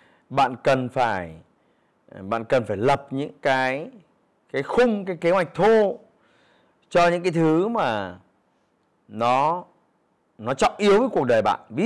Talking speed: 145 wpm